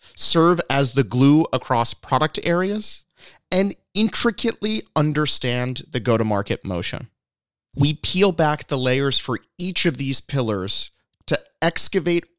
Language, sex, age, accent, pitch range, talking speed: English, male, 30-49, American, 120-170 Hz, 120 wpm